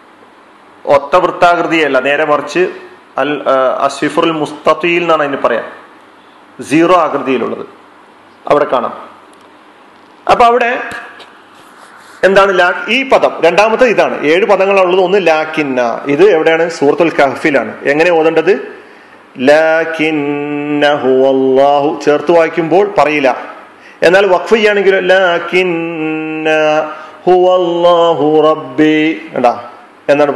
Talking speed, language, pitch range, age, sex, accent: 85 wpm, Malayalam, 150-190 Hz, 40-59, male, native